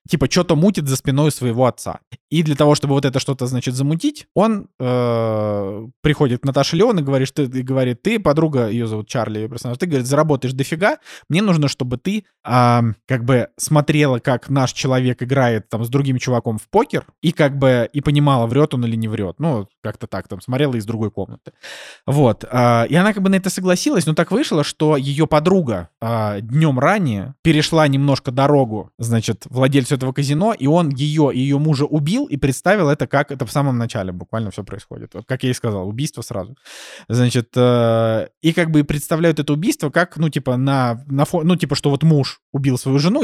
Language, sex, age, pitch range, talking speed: Russian, male, 20-39, 120-150 Hz, 195 wpm